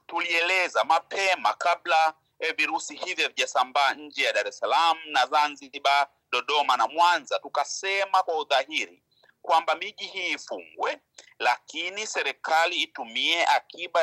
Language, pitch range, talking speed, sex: Swahili, 150-190 Hz, 120 wpm, male